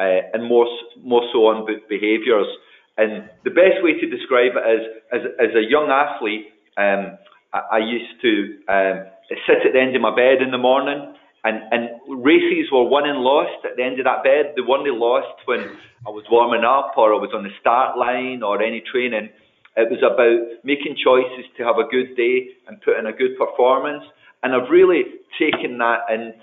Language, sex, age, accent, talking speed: English, male, 30-49, British, 205 wpm